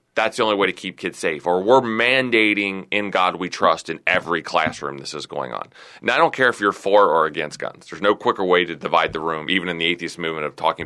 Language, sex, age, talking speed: English, male, 30-49, 260 wpm